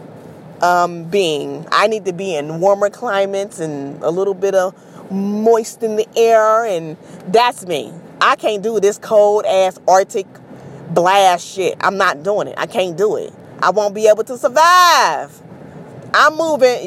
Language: English